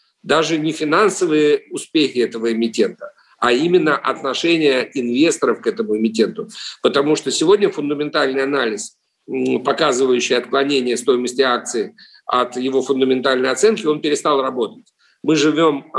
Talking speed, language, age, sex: 115 wpm, Russian, 50-69, male